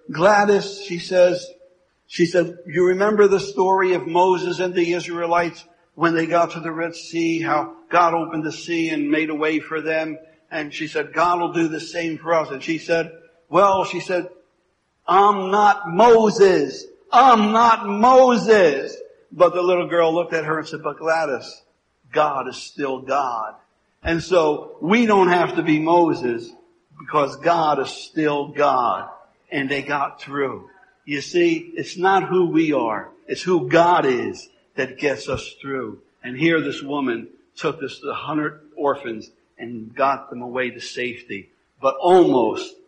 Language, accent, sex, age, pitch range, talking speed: English, American, male, 60-79, 150-190 Hz, 165 wpm